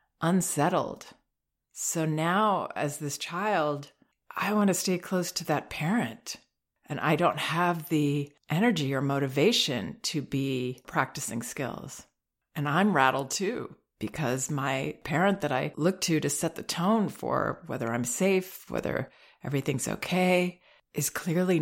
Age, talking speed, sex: 40-59, 140 wpm, female